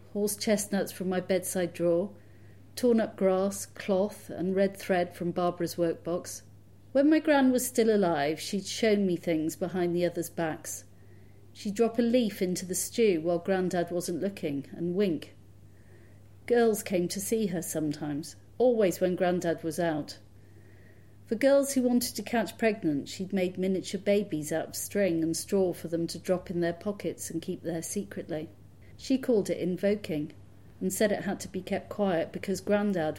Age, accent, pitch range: 40-59, British, 160-205 Hz